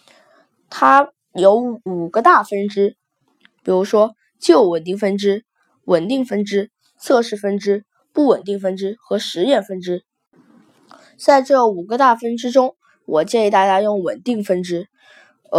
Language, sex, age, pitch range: Chinese, female, 20-39, 190-245 Hz